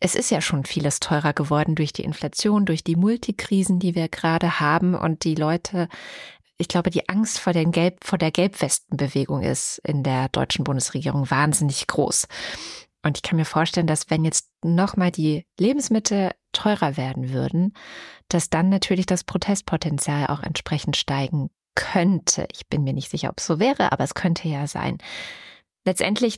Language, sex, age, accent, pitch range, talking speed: German, female, 20-39, German, 155-190 Hz, 170 wpm